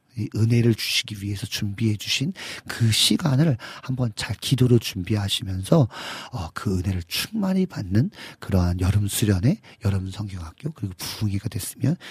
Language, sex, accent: Korean, male, native